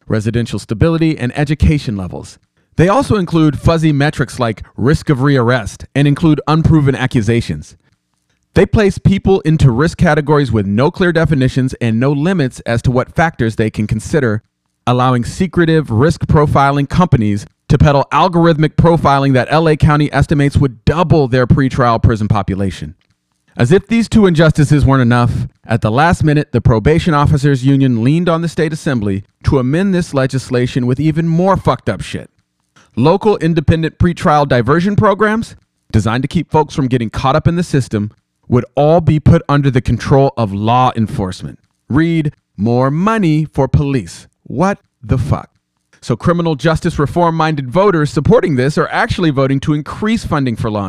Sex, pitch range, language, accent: male, 120-160 Hz, English, American